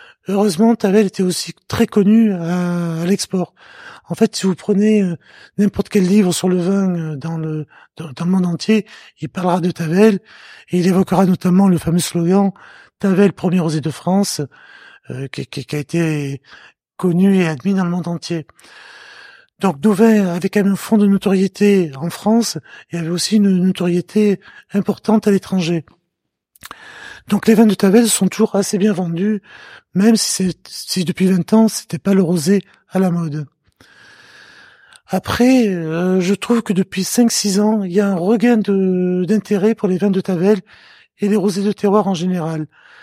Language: English